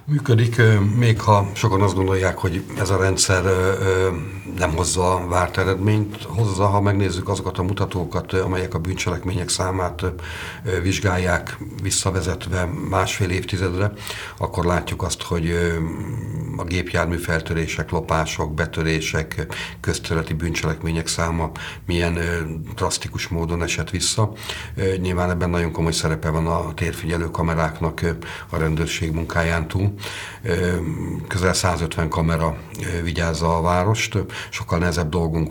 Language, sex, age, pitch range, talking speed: Hungarian, male, 50-69, 85-95 Hz, 115 wpm